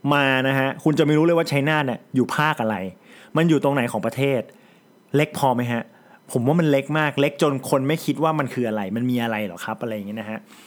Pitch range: 130-175 Hz